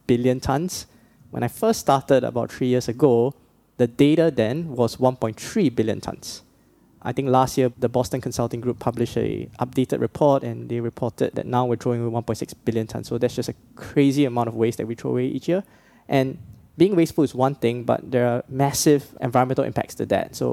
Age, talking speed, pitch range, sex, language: 10-29, 200 wpm, 120-135 Hz, male, English